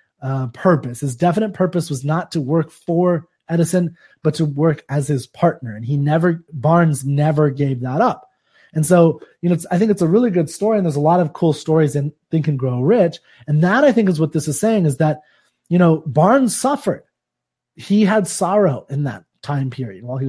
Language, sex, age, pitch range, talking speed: English, male, 30-49, 140-180 Hz, 215 wpm